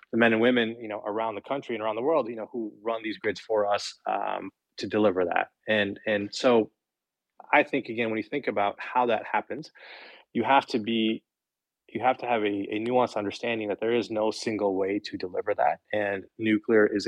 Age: 20-39